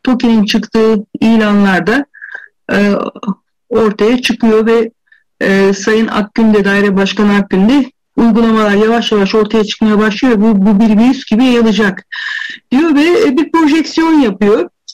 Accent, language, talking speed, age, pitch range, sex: native, Turkish, 135 wpm, 60-79, 205-275 Hz, female